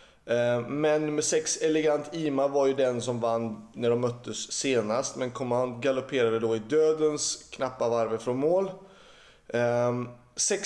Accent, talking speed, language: native, 140 wpm, Swedish